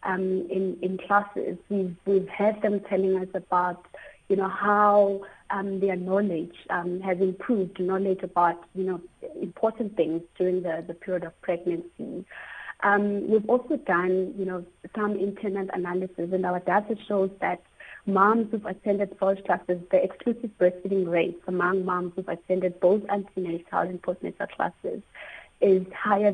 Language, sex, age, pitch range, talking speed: English, female, 30-49, 180-200 Hz, 150 wpm